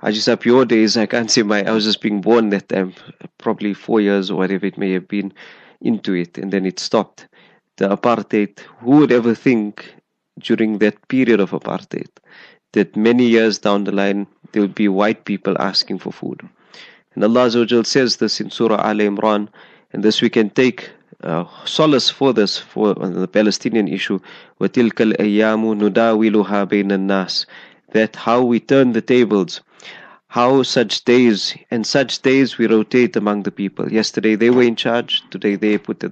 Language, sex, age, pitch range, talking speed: English, male, 30-49, 105-120 Hz, 180 wpm